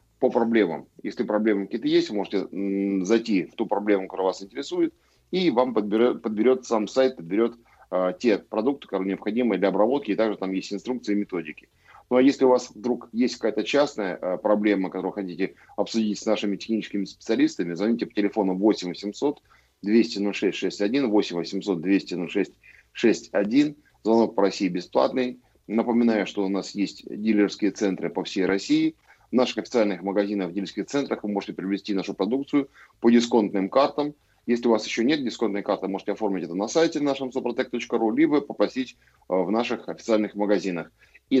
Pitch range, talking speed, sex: 100-120 Hz, 165 wpm, male